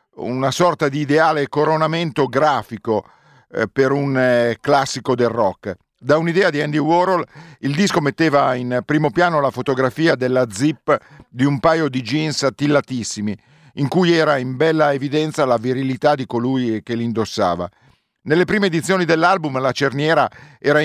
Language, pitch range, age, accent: Italian, 130-160 Hz, 50-69, native